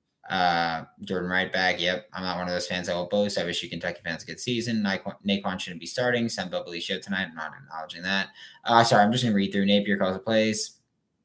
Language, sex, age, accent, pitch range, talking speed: English, male, 20-39, American, 90-115 Hz, 250 wpm